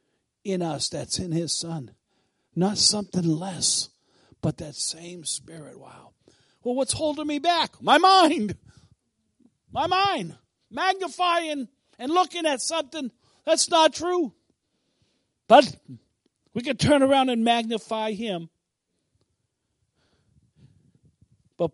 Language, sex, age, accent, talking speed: English, male, 50-69, American, 110 wpm